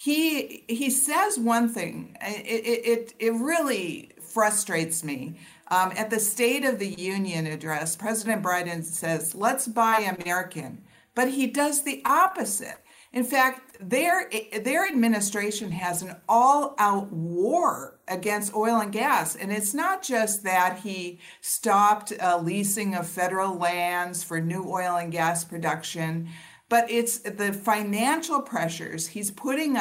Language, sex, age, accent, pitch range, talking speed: English, female, 50-69, American, 180-235 Hz, 135 wpm